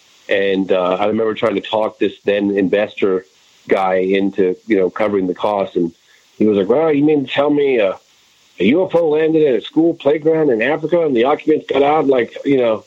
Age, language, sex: 40-59, English, male